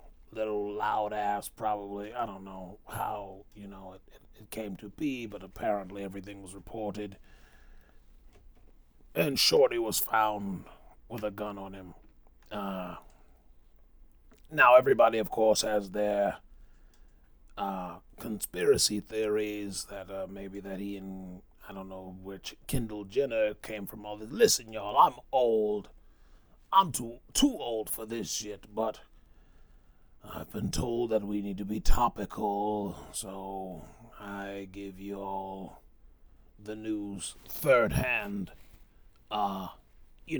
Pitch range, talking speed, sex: 95-110 Hz, 125 wpm, male